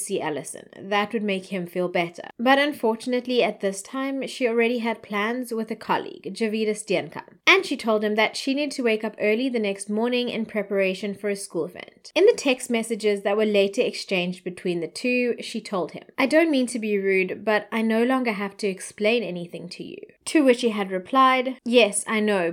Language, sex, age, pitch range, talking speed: English, female, 20-39, 205-260 Hz, 215 wpm